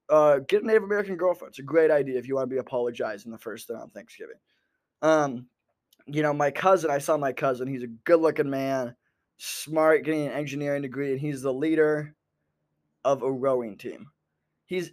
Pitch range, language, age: 140-195 Hz, English, 20-39